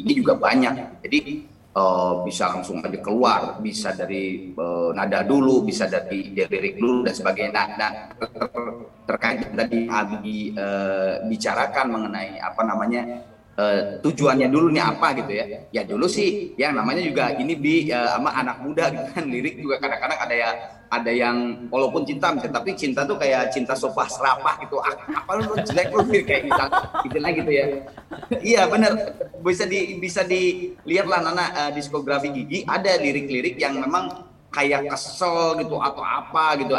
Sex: male